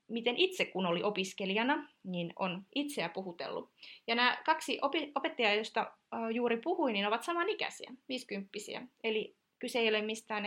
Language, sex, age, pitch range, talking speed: Finnish, female, 30-49, 205-285 Hz, 140 wpm